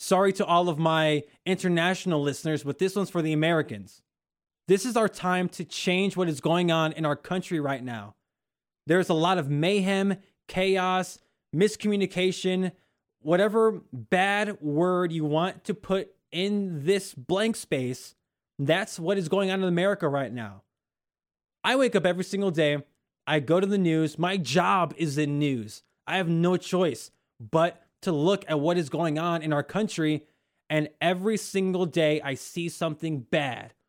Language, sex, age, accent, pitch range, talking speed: English, male, 20-39, American, 155-195 Hz, 165 wpm